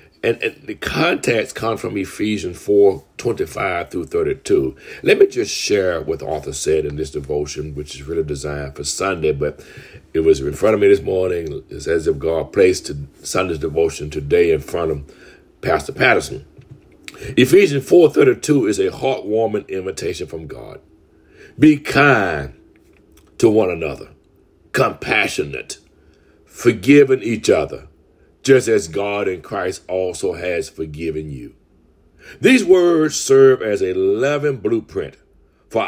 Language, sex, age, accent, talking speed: English, male, 60-79, American, 140 wpm